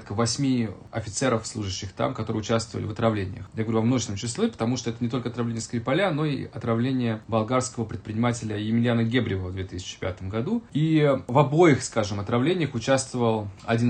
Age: 30-49